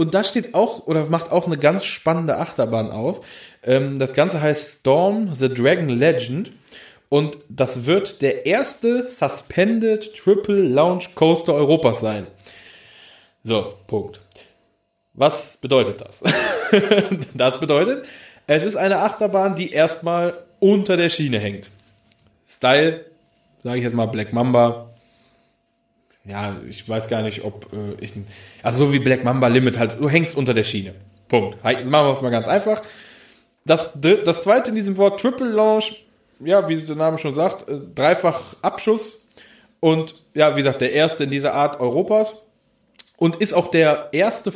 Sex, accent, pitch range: male, German, 120-195 Hz